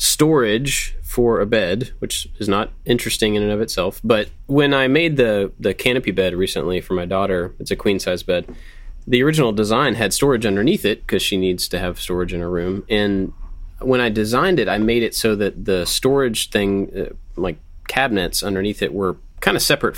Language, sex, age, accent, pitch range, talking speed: English, male, 20-39, American, 90-110 Hz, 200 wpm